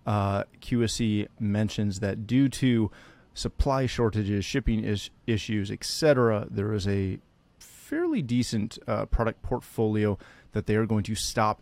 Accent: American